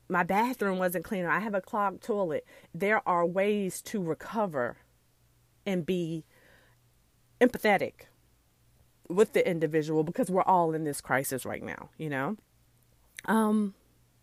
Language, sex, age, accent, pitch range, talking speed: English, female, 40-59, American, 160-215 Hz, 130 wpm